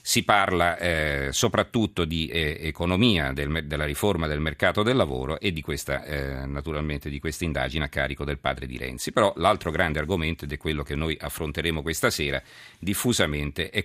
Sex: male